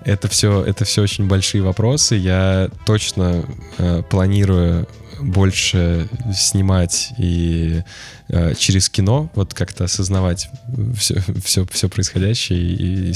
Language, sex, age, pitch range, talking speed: Russian, male, 20-39, 90-110 Hz, 115 wpm